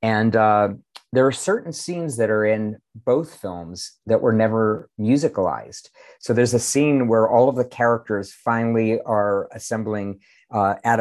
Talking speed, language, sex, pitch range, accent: 160 wpm, English, male, 105-115 Hz, American